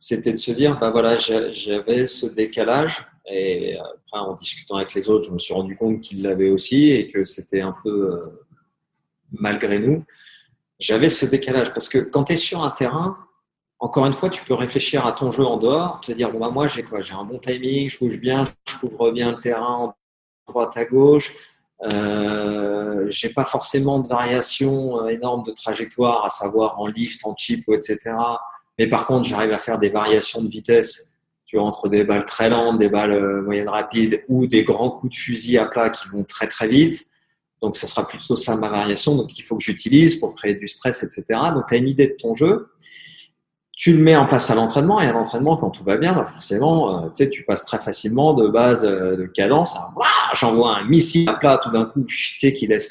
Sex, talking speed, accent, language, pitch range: male, 210 wpm, French, French, 105-135 Hz